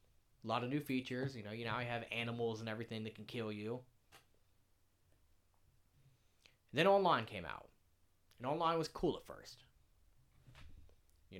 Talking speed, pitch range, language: 155 wpm, 95-120 Hz, English